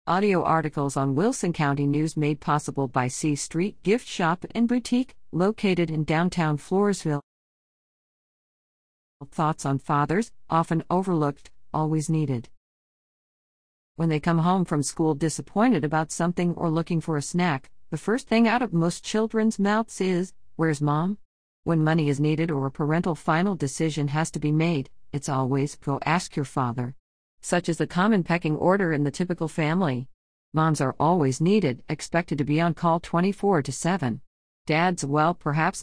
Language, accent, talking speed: English, American, 160 wpm